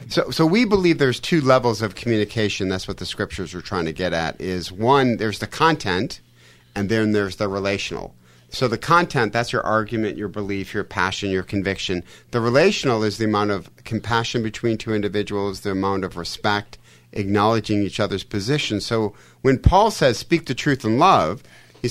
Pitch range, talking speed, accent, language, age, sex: 95-120 Hz, 185 wpm, American, English, 50-69, male